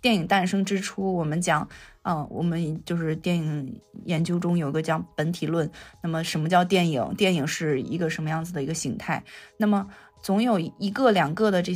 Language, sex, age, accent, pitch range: Chinese, female, 20-39, native, 160-200 Hz